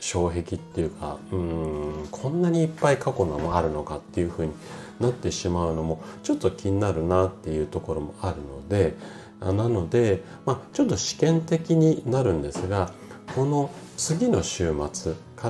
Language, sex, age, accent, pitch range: Japanese, male, 40-59, native, 80-120 Hz